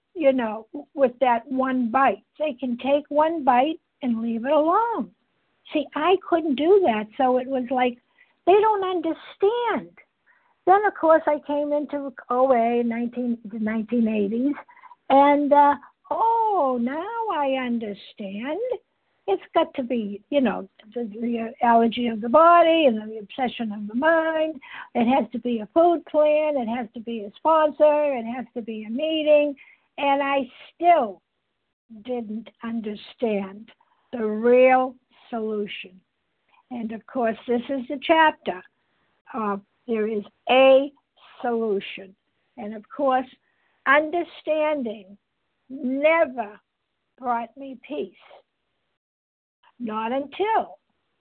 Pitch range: 230-310 Hz